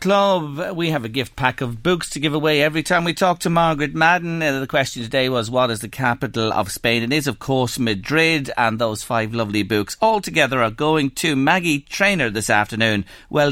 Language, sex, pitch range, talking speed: English, male, 115-170 Hz, 215 wpm